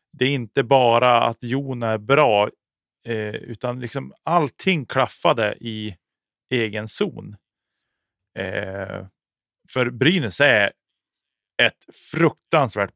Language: Swedish